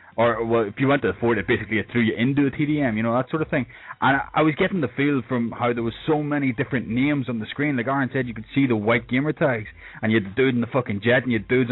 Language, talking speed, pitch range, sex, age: English, 315 wpm, 115-140 Hz, male, 20-39